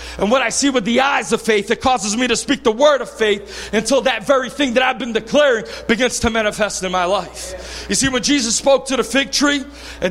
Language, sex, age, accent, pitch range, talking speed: English, male, 40-59, American, 235-285 Hz, 250 wpm